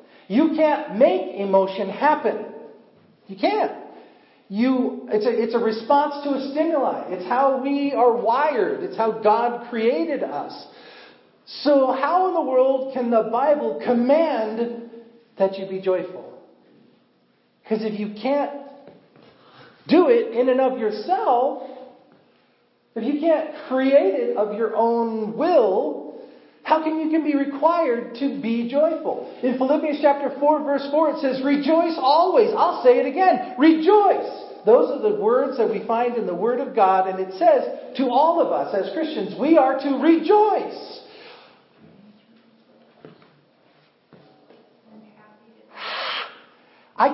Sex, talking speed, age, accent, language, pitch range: male, 135 wpm, 40-59, American, English, 225-325 Hz